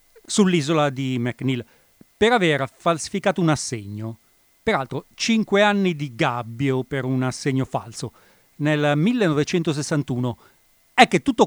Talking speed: 115 wpm